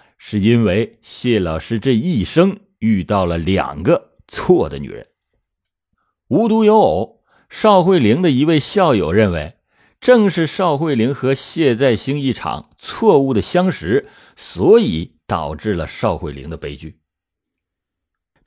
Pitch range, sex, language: 90-130 Hz, male, Chinese